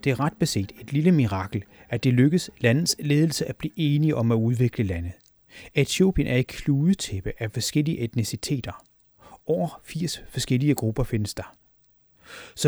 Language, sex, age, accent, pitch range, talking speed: Danish, male, 30-49, native, 115-155 Hz, 155 wpm